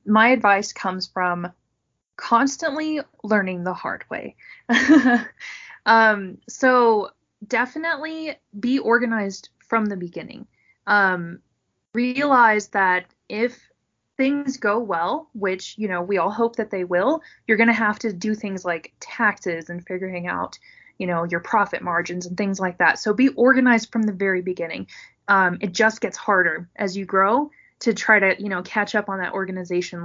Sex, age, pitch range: female, 20-39, 190-245 Hz